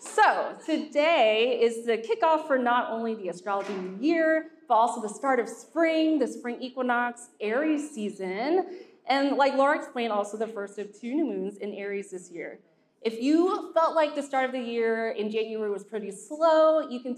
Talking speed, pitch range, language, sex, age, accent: 190 wpm, 205-265 Hz, English, female, 20-39, American